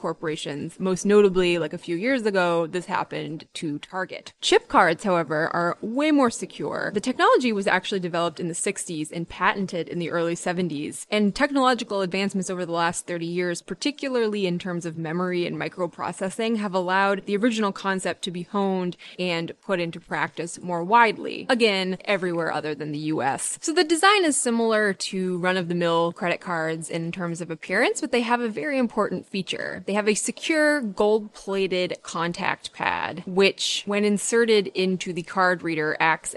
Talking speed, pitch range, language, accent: 170 wpm, 170-225 Hz, English, American